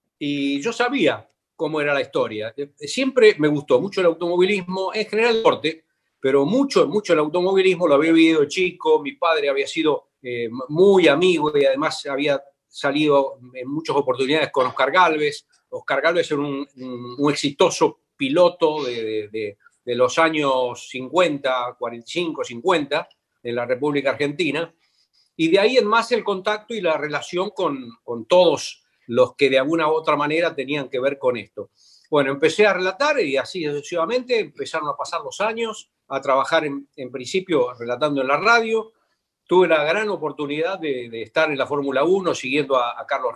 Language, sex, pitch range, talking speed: Spanish, male, 140-220 Hz, 175 wpm